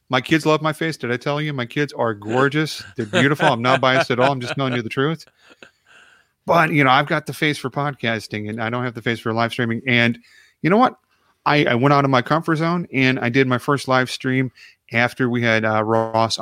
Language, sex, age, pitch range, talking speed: English, male, 30-49, 115-135 Hz, 250 wpm